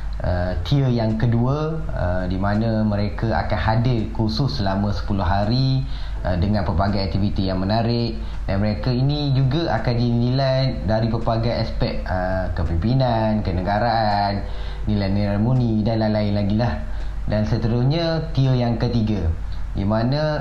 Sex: male